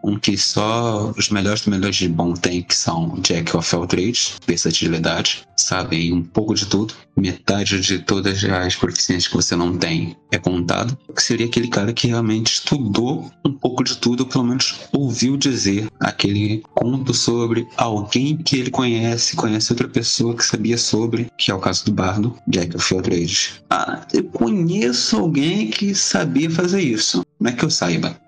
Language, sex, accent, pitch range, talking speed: Portuguese, male, Brazilian, 90-120 Hz, 175 wpm